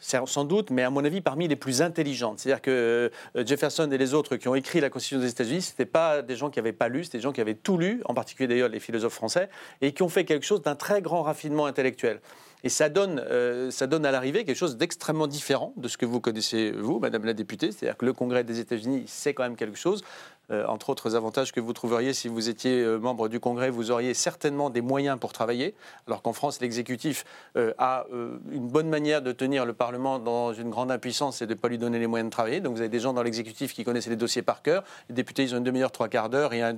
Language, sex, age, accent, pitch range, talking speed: French, male, 40-59, French, 120-155 Hz, 260 wpm